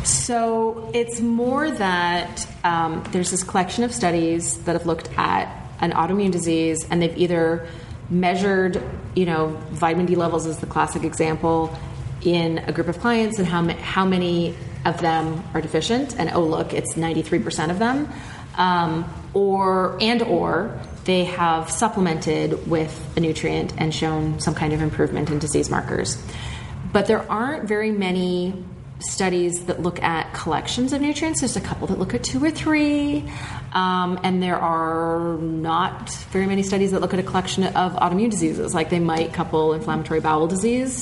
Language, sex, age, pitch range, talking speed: English, female, 30-49, 160-205 Hz, 165 wpm